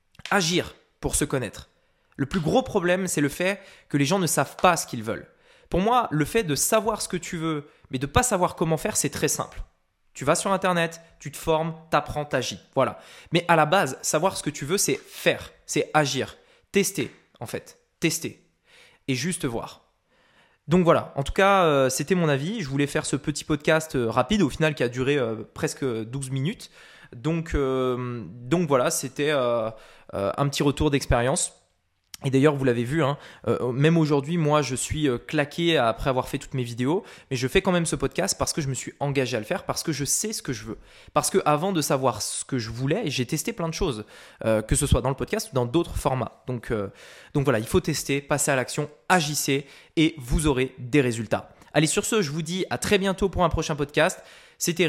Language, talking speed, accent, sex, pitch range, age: French, 220 wpm, French, male, 130-170 Hz, 20-39